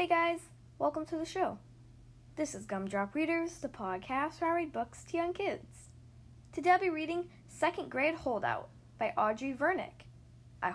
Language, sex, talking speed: English, female, 165 wpm